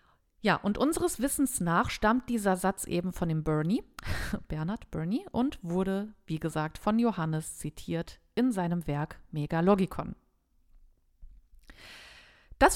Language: German